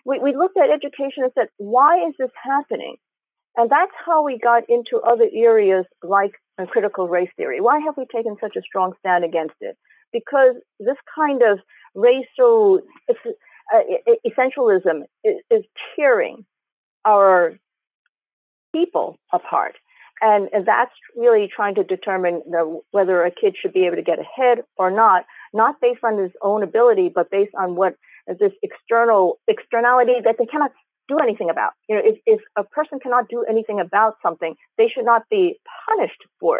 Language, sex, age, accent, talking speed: English, female, 50-69, American, 155 wpm